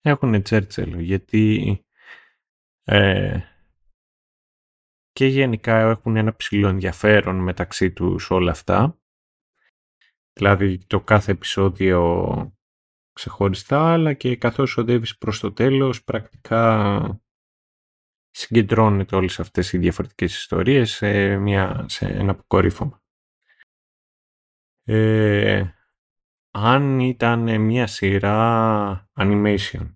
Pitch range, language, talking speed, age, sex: 95-120 Hz, Greek, 90 wpm, 30-49, male